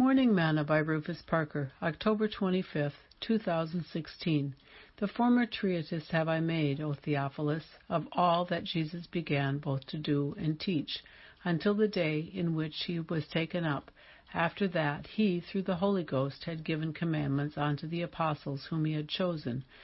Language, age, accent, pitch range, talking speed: English, 60-79, American, 150-185 Hz, 155 wpm